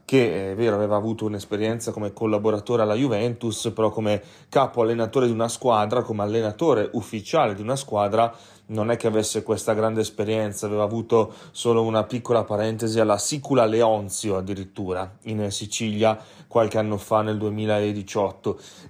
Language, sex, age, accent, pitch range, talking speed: Italian, male, 30-49, native, 105-125 Hz, 150 wpm